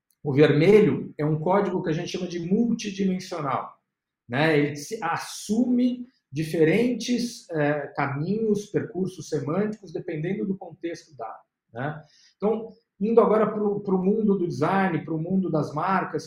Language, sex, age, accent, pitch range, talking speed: Portuguese, male, 50-69, Brazilian, 150-200 Hz, 135 wpm